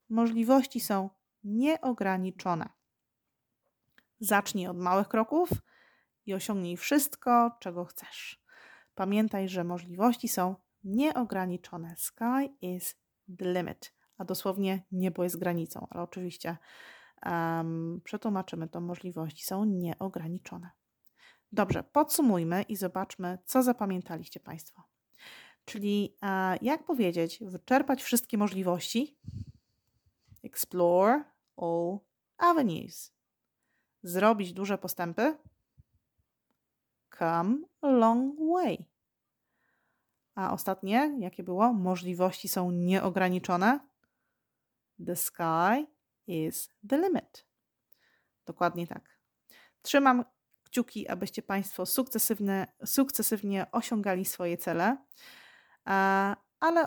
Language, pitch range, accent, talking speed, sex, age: Polish, 180-235 Hz, native, 85 wpm, female, 30-49